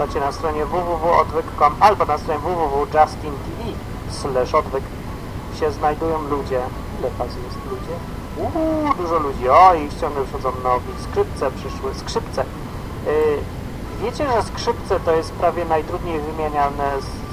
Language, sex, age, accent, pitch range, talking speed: Polish, male, 40-59, native, 125-205 Hz, 120 wpm